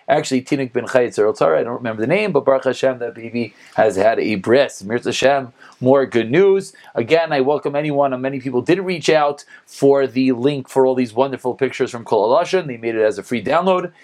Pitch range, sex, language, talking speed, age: 140-215 Hz, male, English, 220 wpm, 30-49